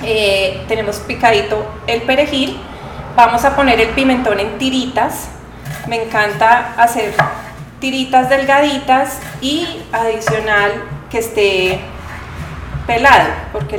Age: 30-49